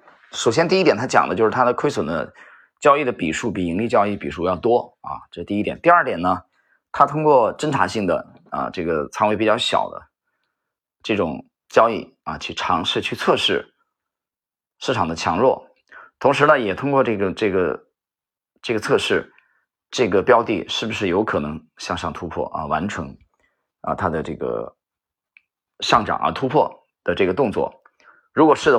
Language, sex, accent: Chinese, male, native